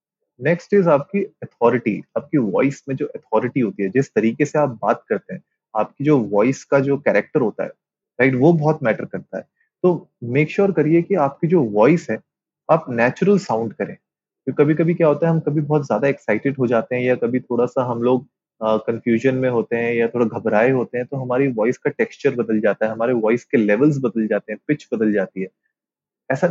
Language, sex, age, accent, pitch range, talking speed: Hindi, male, 20-39, native, 115-155 Hz, 215 wpm